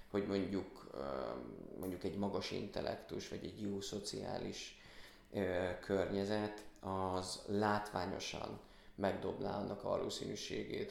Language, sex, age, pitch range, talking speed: Hungarian, male, 20-39, 95-105 Hz, 90 wpm